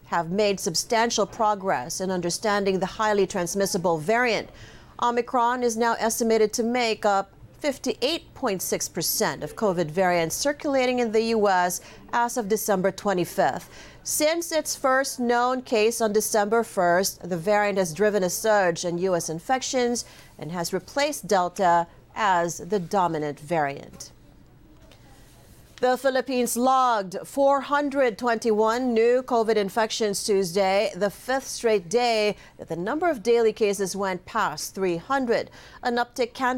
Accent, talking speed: American, 130 wpm